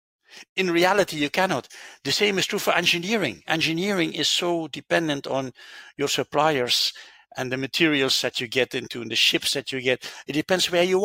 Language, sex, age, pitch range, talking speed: English, male, 60-79, 135-180 Hz, 185 wpm